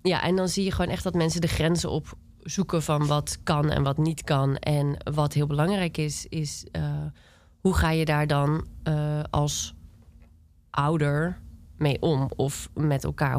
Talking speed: 175 wpm